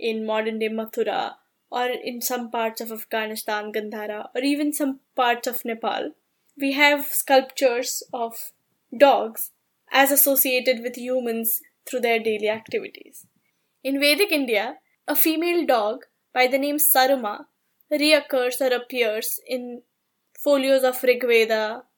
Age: 10-29